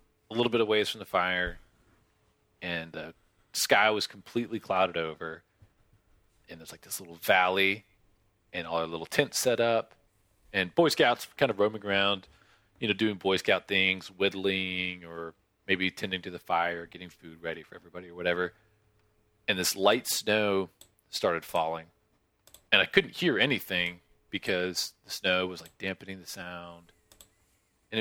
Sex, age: male, 30-49